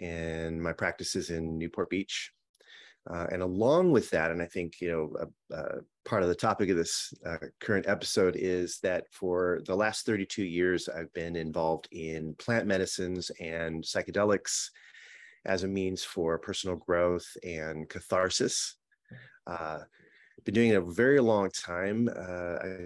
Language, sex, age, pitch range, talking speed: English, male, 30-49, 85-95 Hz, 155 wpm